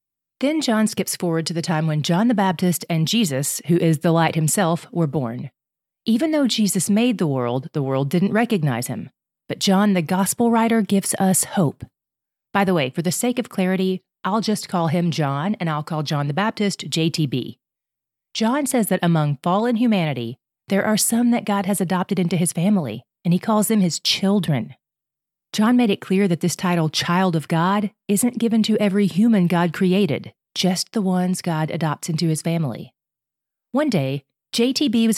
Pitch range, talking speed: 160-210 Hz, 190 wpm